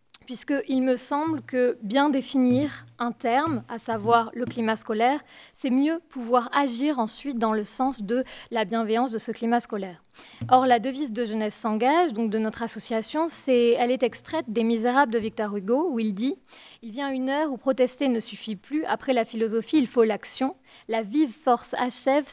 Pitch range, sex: 225-270 Hz, female